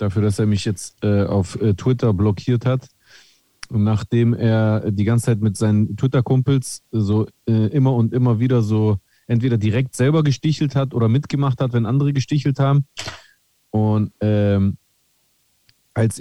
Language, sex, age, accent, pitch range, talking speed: German, male, 30-49, German, 105-135 Hz, 155 wpm